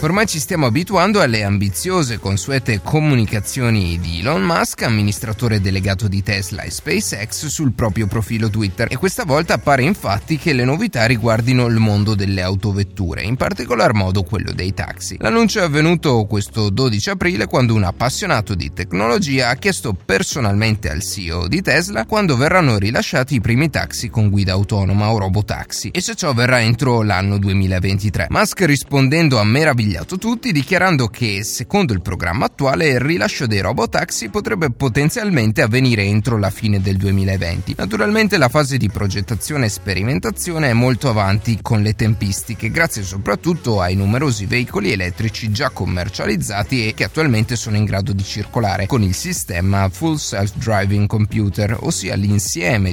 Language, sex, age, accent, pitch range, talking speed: Italian, male, 30-49, native, 100-145 Hz, 155 wpm